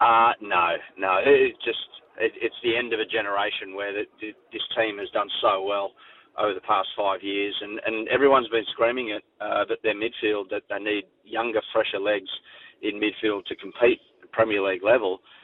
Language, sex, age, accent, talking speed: English, male, 40-59, Australian, 200 wpm